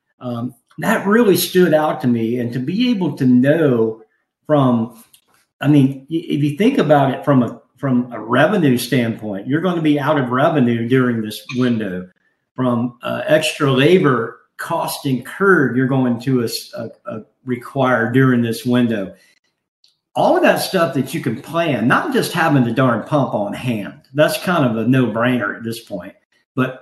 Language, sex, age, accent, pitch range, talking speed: English, male, 50-69, American, 120-150 Hz, 175 wpm